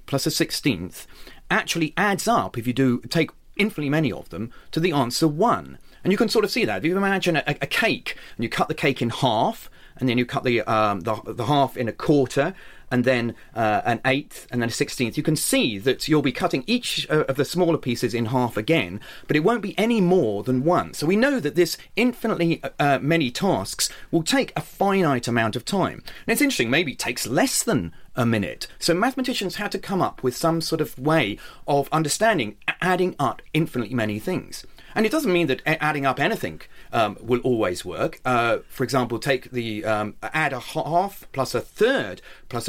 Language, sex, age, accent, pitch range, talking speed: English, male, 30-49, British, 125-180 Hz, 210 wpm